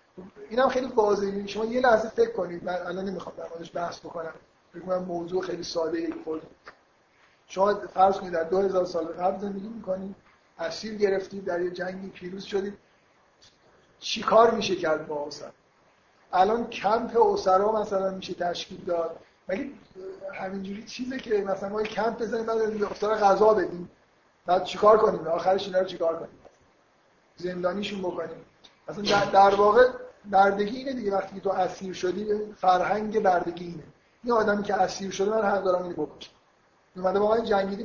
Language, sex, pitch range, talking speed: Persian, male, 175-210 Hz, 160 wpm